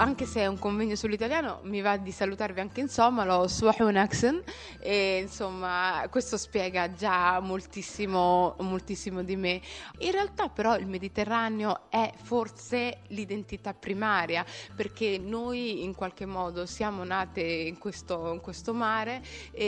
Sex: female